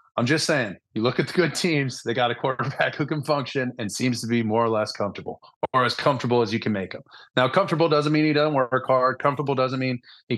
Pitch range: 120-150 Hz